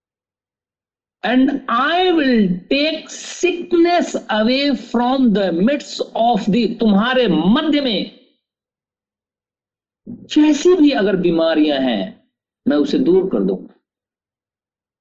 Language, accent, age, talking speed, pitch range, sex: Hindi, native, 50-69, 90 wpm, 195-300 Hz, male